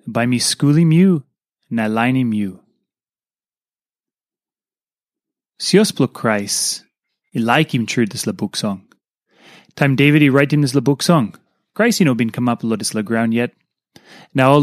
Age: 30-49